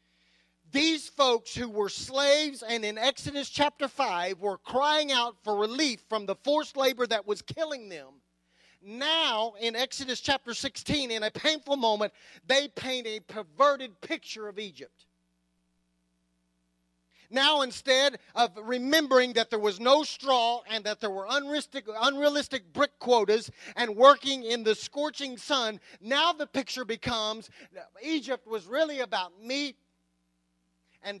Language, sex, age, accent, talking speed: English, male, 40-59, American, 135 wpm